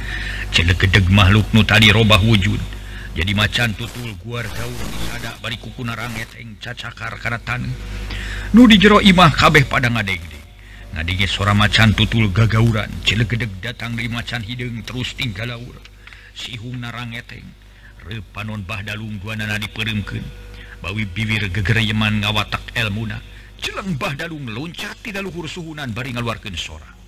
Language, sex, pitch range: Indonesian, male, 100-120 Hz